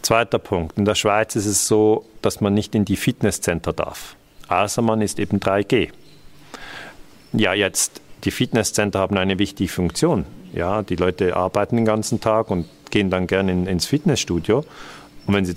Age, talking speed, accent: 50-69, 175 wpm, German